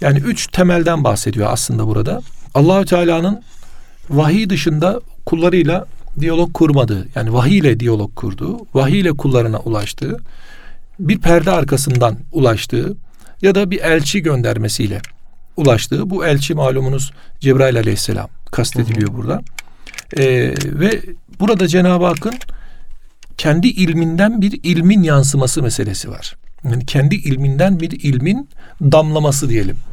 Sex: male